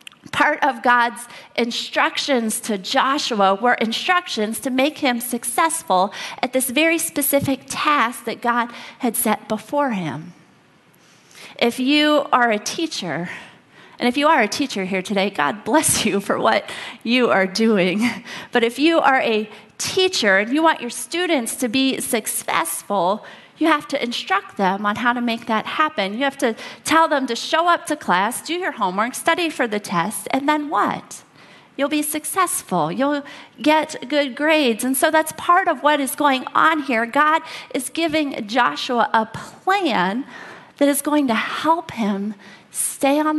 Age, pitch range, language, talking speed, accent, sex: 30-49, 220-300 Hz, English, 165 wpm, American, female